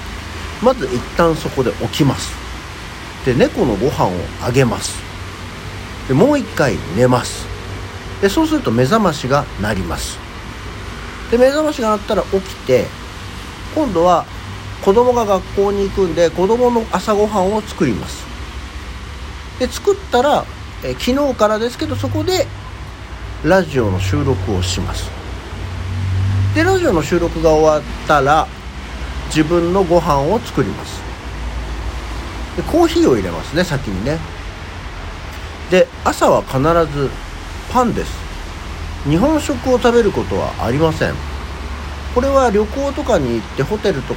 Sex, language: male, Japanese